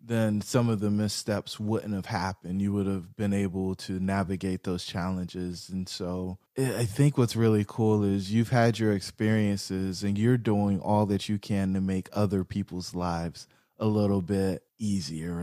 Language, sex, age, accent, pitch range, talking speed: English, male, 20-39, American, 90-110 Hz, 175 wpm